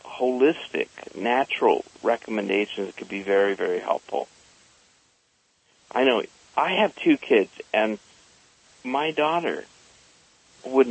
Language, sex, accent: English, male, American